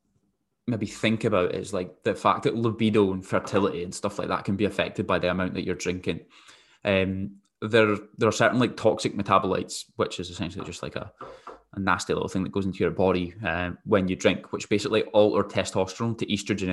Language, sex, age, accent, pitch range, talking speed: English, male, 10-29, British, 95-110 Hz, 210 wpm